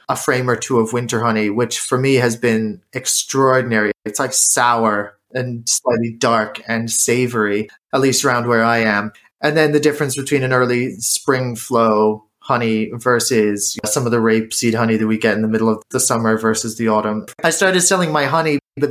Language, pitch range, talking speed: English, 115-150 Hz, 195 wpm